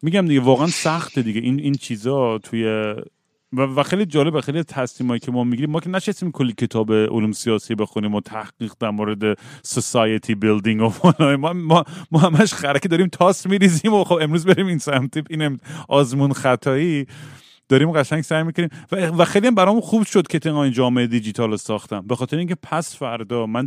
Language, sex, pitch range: Persian, male, 115-145 Hz